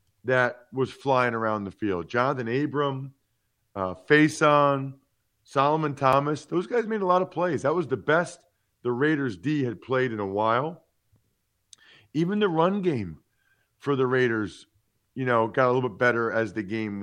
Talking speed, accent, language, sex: 170 wpm, American, English, male